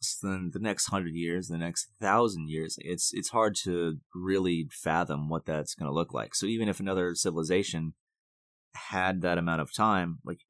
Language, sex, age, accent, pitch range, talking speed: English, male, 20-39, American, 80-90 Hz, 185 wpm